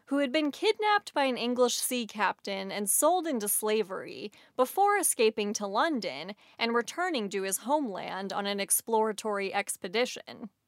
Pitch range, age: 195-280 Hz, 20-39